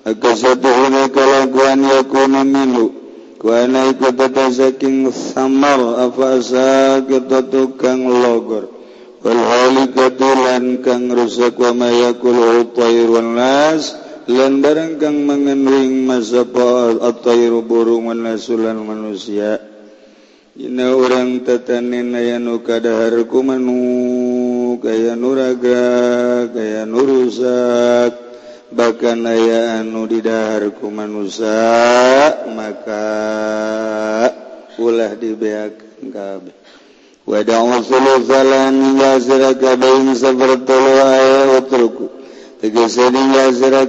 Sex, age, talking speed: male, 50-69, 75 wpm